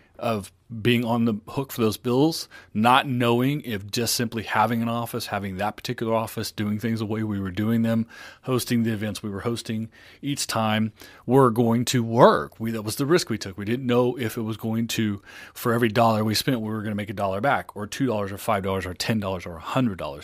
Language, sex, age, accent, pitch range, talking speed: English, male, 30-49, American, 100-120 Hz, 220 wpm